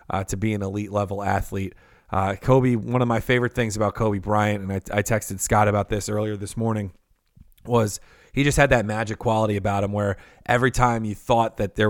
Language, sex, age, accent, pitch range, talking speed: English, male, 30-49, American, 105-120 Hz, 210 wpm